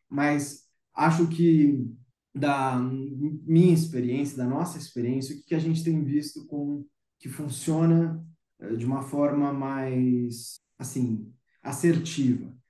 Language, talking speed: Portuguese, 115 wpm